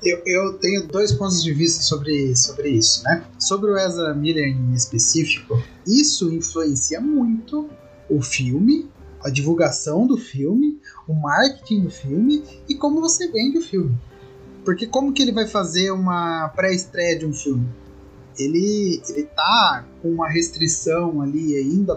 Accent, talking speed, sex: Brazilian, 150 wpm, male